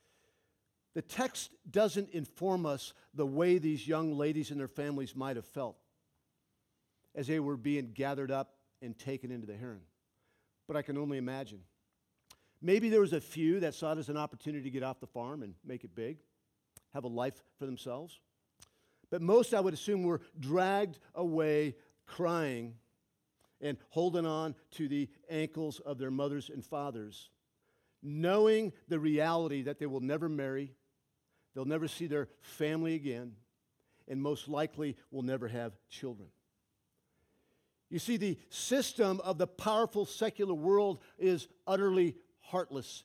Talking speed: 155 wpm